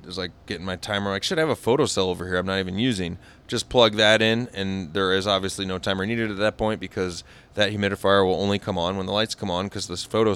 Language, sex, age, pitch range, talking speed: English, male, 30-49, 90-115 Hz, 270 wpm